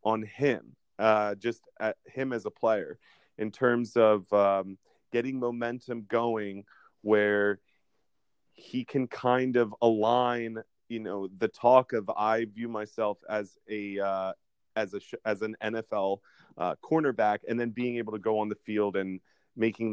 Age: 30-49